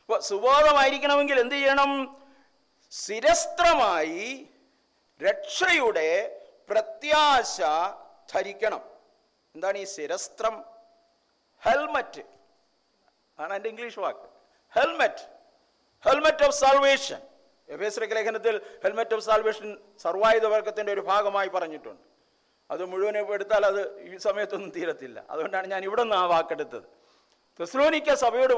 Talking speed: 65 wpm